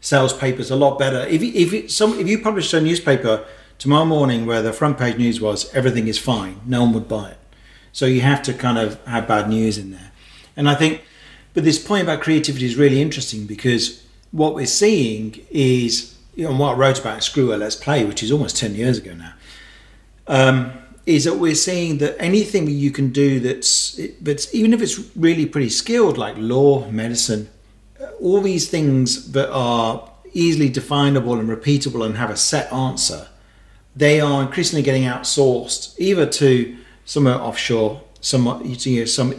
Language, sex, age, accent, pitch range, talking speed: English, male, 40-59, British, 110-145 Hz, 185 wpm